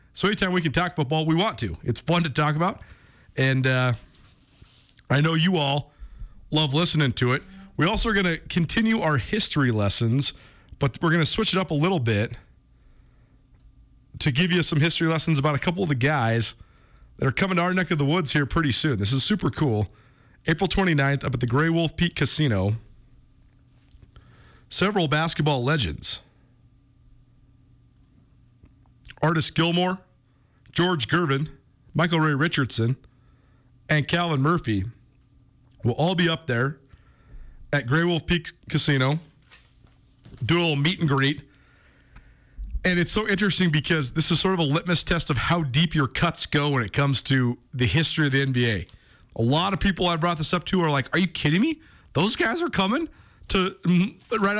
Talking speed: 175 wpm